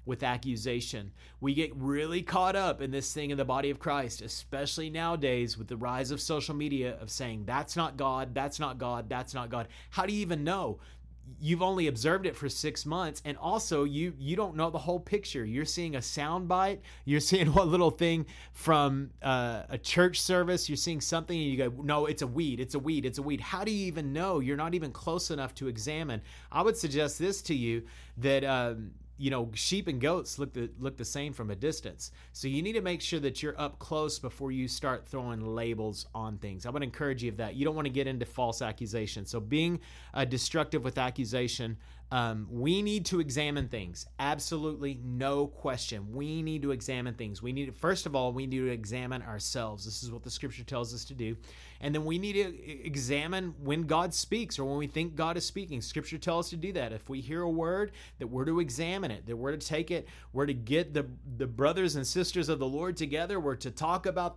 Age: 30-49